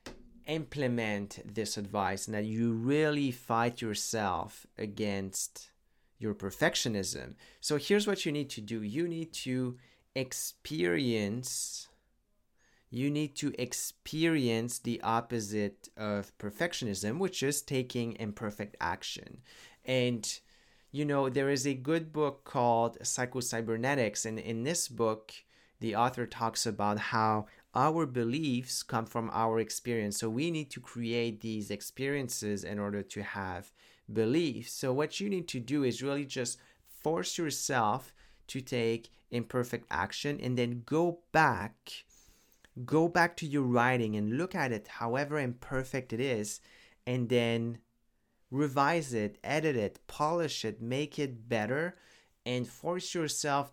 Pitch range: 110-140 Hz